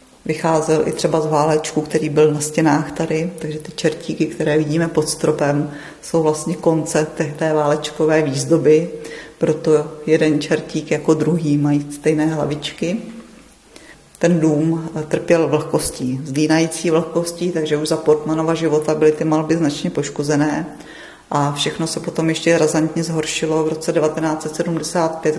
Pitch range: 150-160 Hz